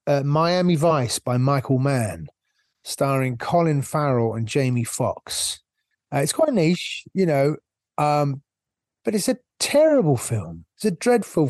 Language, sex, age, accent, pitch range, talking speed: English, male, 30-49, British, 140-185 Hz, 140 wpm